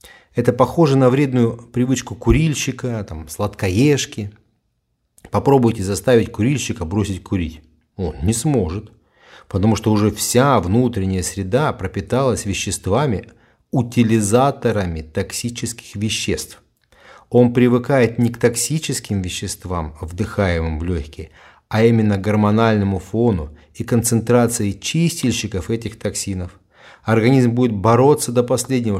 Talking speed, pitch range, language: 100 wpm, 95-120 Hz, Russian